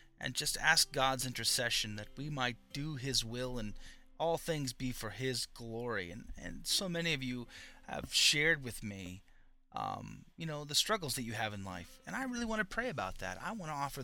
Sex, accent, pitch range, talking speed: male, American, 115-150 Hz, 215 wpm